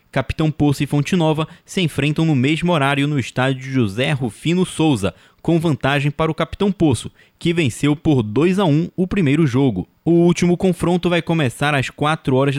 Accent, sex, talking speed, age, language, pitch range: Brazilian, male, 175 wpm, 20-39, Portuguese, 130-165 Hz